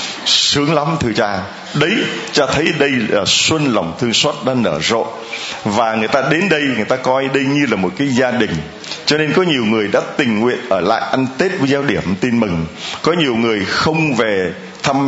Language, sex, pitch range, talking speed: Vietnamese, male, 115-160 Hz, 215 wpm